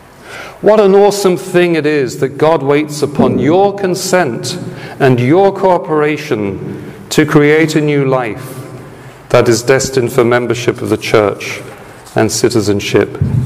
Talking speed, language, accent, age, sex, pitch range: 135 wpm, English, British, 40-59, male, 125-155 Hz